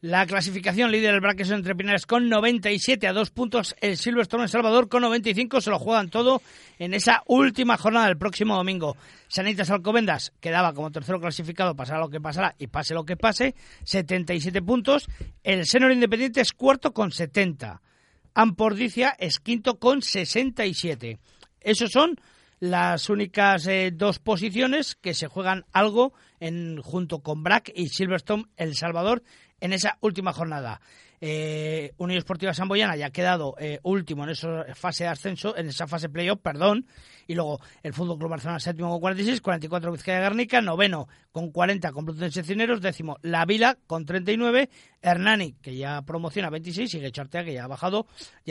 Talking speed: 165 wpm